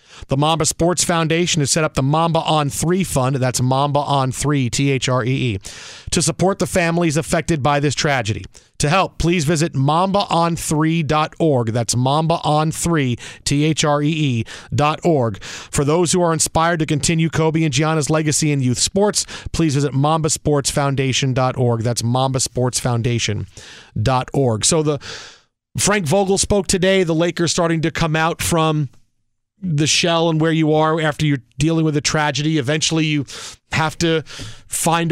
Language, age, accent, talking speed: English, 40-59, American, 150 wpm